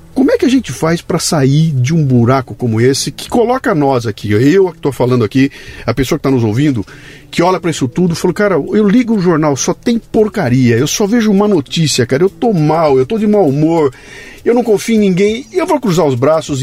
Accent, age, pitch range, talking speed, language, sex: Brazilian, 50-69, 130-195 Hz, 240 wpm, Portuguese, male